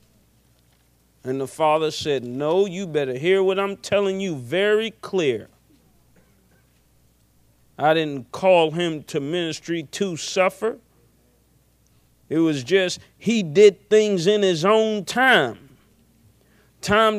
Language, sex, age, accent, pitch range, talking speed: English, male, 40-59, American, 130-200 Hz, 115 wpm